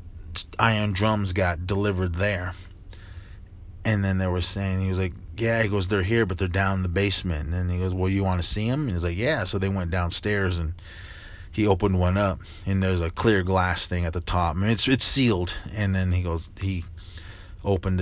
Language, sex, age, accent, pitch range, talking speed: English, male, 30-49, American, 90-105 Hz, 215 wpm